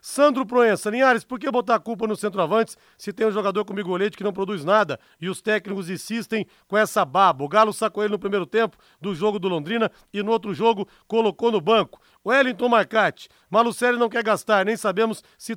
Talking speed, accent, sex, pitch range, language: 210 wpm, Brazilian, male, 195-230 Hz, Portuguese